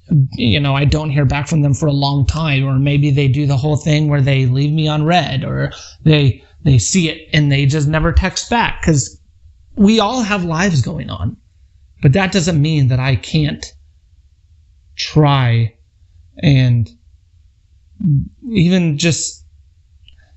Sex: male